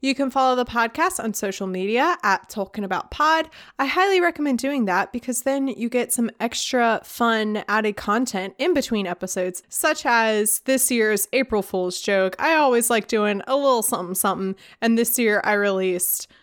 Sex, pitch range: female, 200-270 Hz